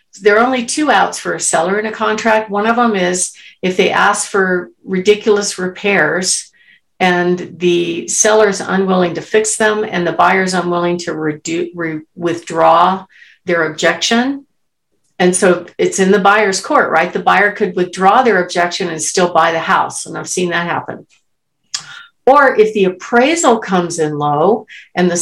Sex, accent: female, American